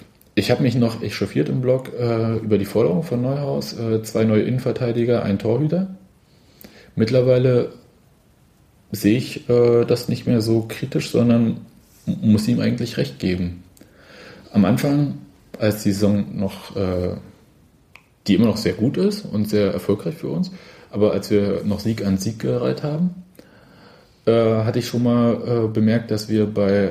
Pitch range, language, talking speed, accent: 100-125 Hz, German, 160 wpm, German